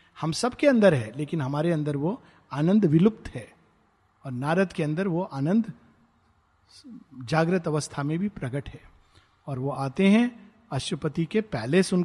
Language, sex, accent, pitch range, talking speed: Hindi, male, native, 135-185 Hz, 135 wpm